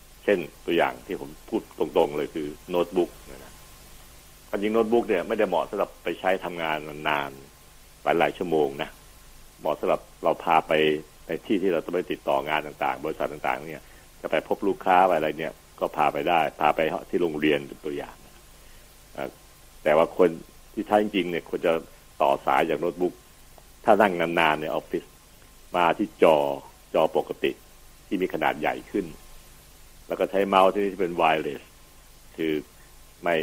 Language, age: Thai, 60-79